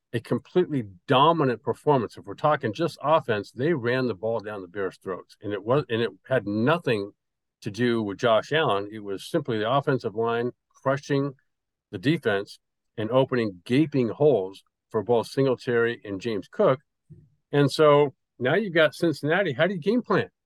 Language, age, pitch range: English, 50-69, 105-140 Hz